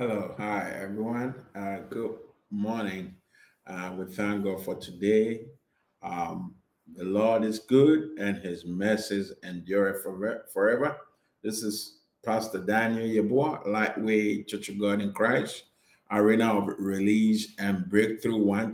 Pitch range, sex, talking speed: 100-115 Hz, male, 125 wpm